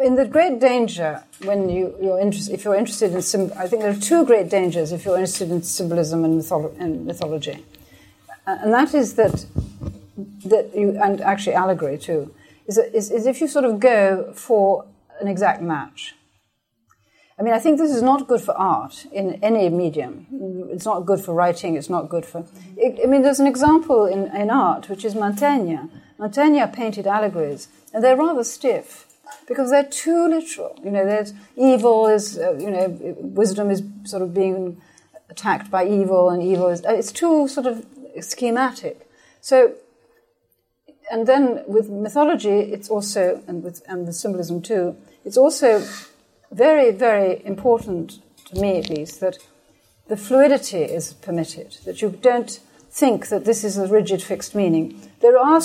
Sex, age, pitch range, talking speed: female, 60-79, 180-255 Hz, 170 wpm